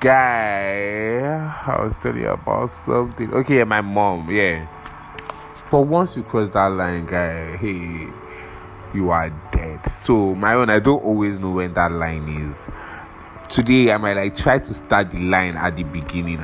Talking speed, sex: 170 wpm, male